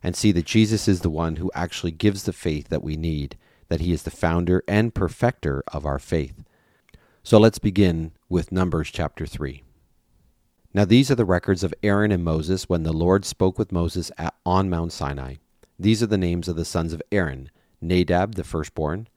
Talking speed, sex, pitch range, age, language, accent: 195 wpm, male, 80-105 Hz, 40-59, English, American